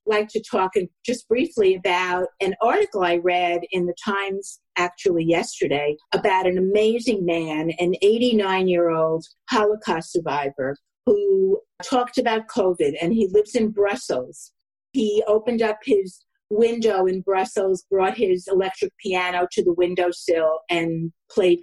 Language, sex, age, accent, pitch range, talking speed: English, female, 50-69, American, 175-225 Hz, 140 wpm